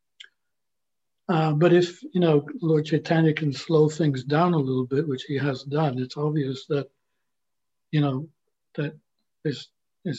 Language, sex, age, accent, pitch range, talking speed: English, male, 60-79, American, 135-155 Hz, 145 wpm